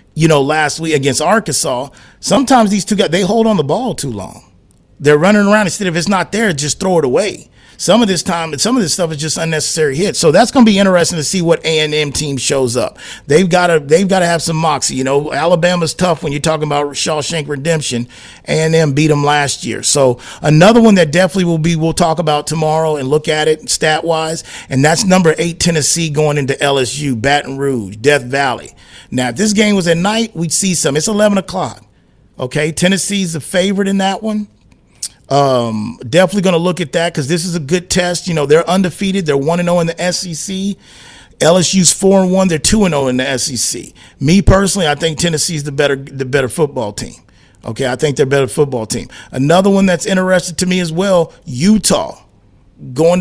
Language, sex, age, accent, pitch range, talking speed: English, male, 40-59, American, 145-180 Hz, 210 wpm